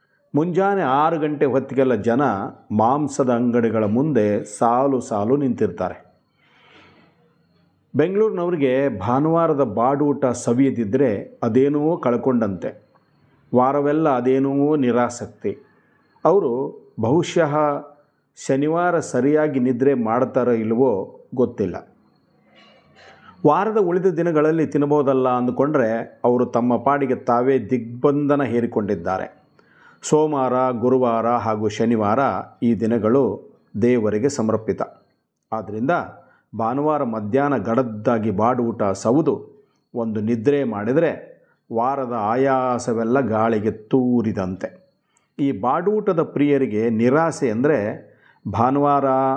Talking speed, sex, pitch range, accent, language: 80 wpm, male, 115-145 Hz, native, Kannada